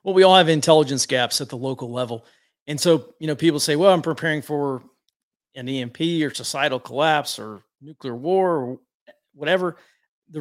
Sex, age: male, 40-59